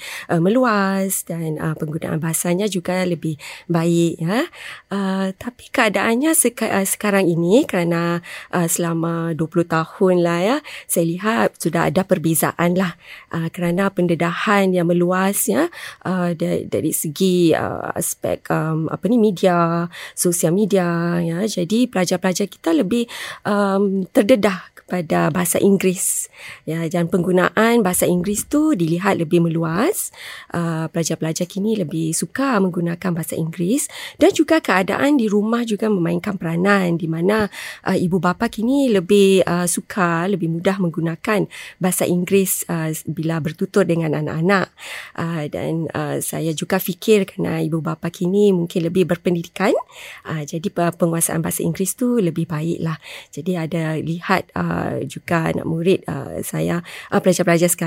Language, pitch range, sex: Malay, 170-200 Hz, female